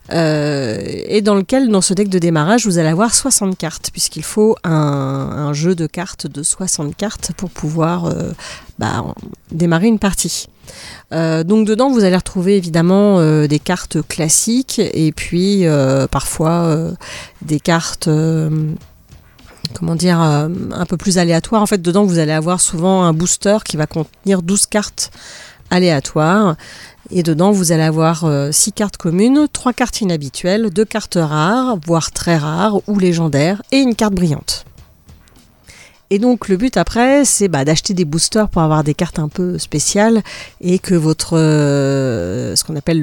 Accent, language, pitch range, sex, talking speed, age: French, French, 155-195 Hz, female, 165 wpm, 40-59